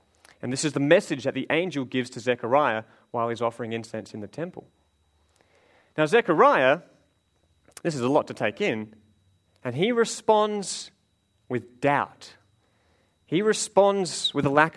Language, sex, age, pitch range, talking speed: English, male, 30-49, 115-165 Hz, 150 wpm